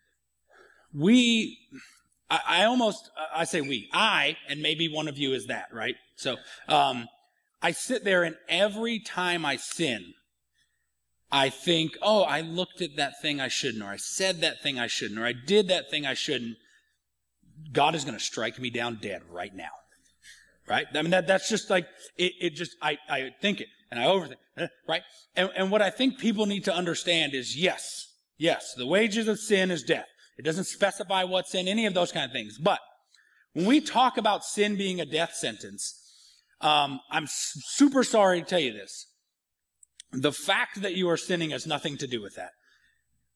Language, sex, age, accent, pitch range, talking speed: English, male, 30-49, American, 145-200 Hz, 190 wpm